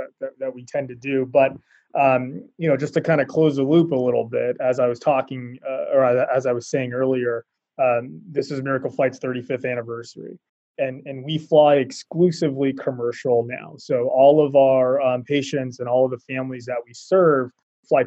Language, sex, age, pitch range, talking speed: English, male, 20-39, 130-155 Hz, 200 wpm